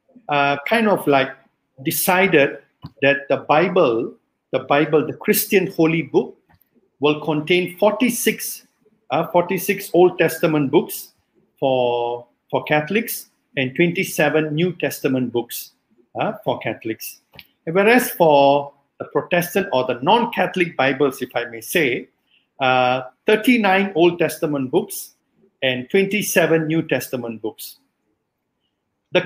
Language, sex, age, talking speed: English, male, 50-69, 115 wpm